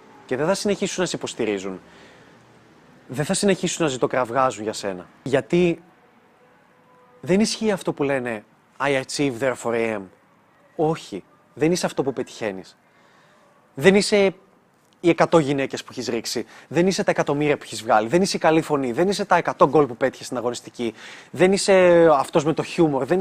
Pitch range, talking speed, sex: 130-180 Hz, 170 wpm, male